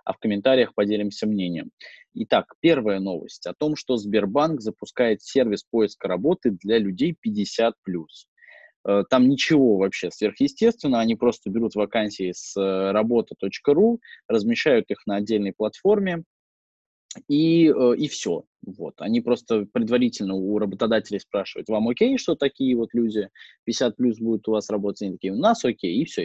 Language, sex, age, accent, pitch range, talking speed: Russian, male, 20-39, native, 105-160 Hz, 140 wpm